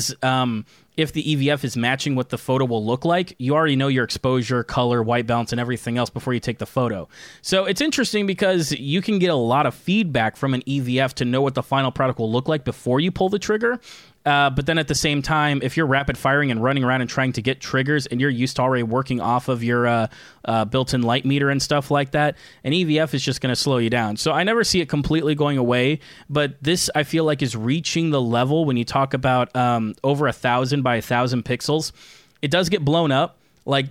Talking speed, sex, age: 250 wpm, male, 20-39